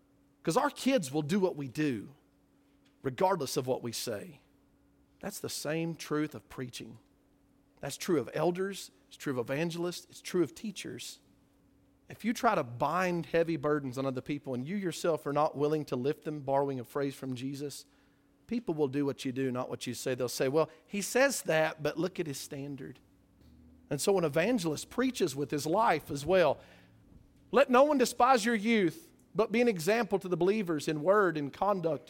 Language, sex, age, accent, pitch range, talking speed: English, male, 40-59, American, 145-230 Hz, 195 wpm